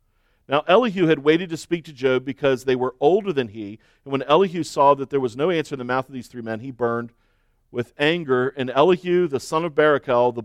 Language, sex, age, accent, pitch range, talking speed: English, male, 40-59, American, 130-160 Hz, 235 wpm